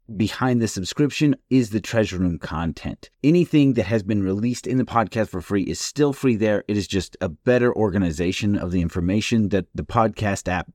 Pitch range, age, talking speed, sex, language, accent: 95-120 Hz, 30-49, 195 wpm, male, English, American